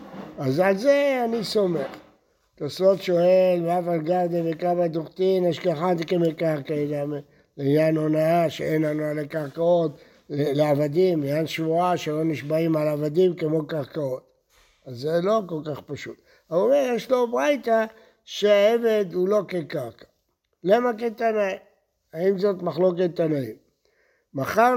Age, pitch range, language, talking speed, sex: 60-79, 155-210 Hz, Hebrew, 125 wpm, male